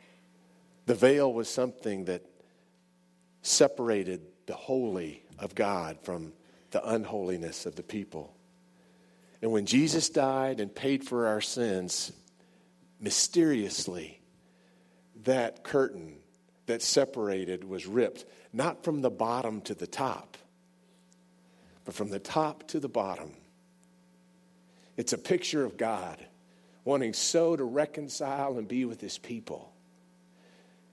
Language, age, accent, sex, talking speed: English, 50-69, American, male, 115 wpm